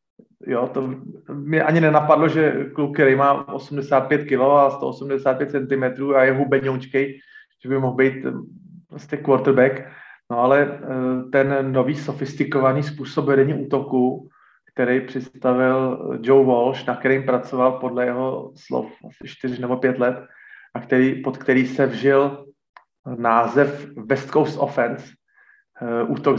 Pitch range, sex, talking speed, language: 125-140 Hz, male, 125 wpm, Slovak